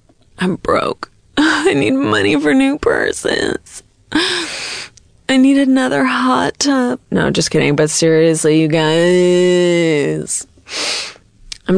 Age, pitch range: 20-39, 155-200 Hz